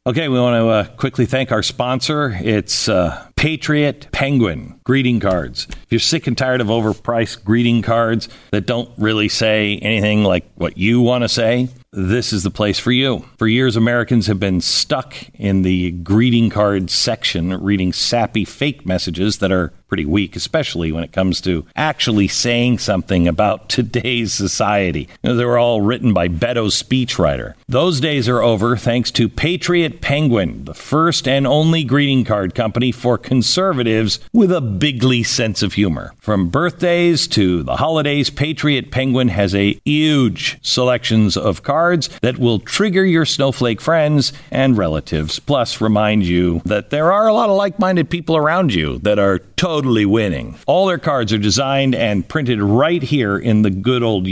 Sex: male